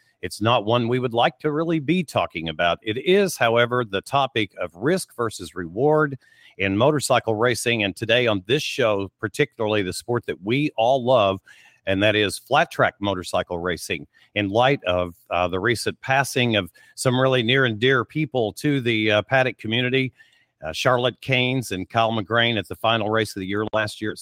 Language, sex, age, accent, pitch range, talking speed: English, male, 50-69, American, 105-125 Hz, 190 wpm